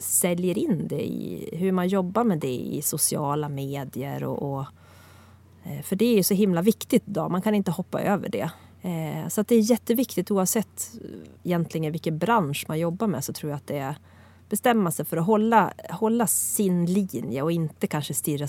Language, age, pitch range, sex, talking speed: English, 30-49, 145-195 Hz, female, 190 wpm